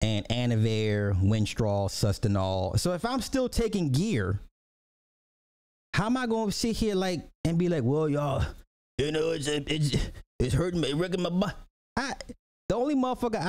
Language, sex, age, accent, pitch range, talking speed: English, male, 30-49, American, 95-140 Hz, 160 wpm